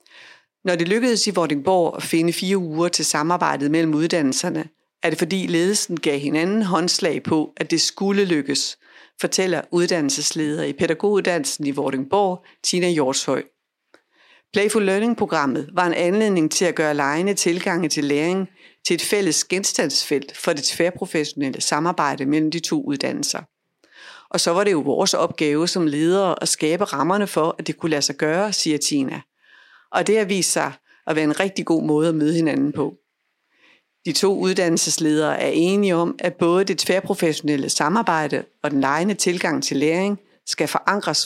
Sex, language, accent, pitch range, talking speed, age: female, Danish, native, 155-190 Hz, 165 wpm, 60-79